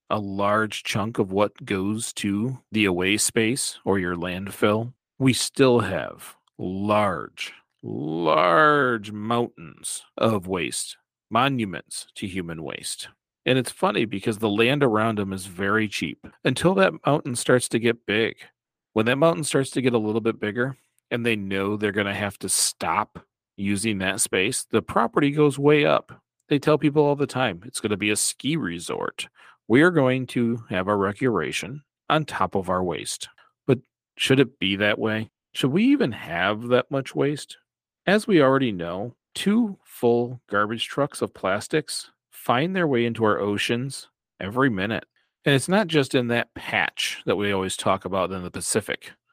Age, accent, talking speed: 40-59, American, 170 wpm